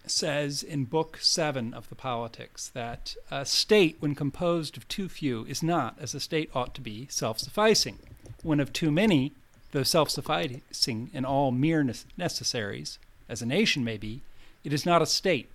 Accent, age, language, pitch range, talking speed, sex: American, 40-59, English, 125-155 Hz, 175 wpm, male